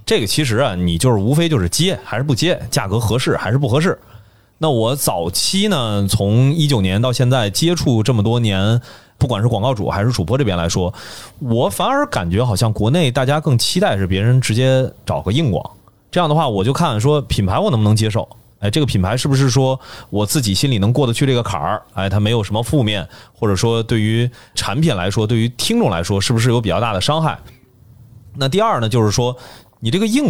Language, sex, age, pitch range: Chinese, male, 30-49, 105-145 Hz